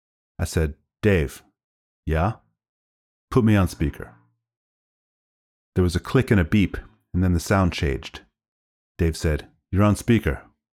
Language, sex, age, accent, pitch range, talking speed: English, male, 30-49, American, 75-100 Hz, 140 wpm